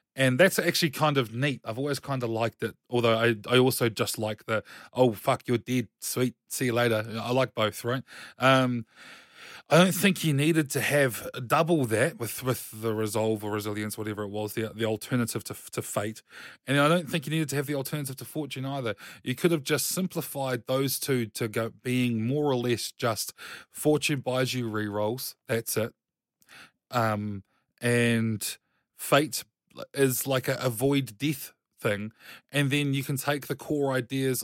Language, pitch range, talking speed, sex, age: English, 115-145 Hz, 185 wpm, male, 20-39